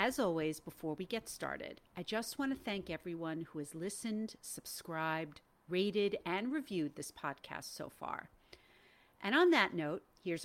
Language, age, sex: English, 50-69, female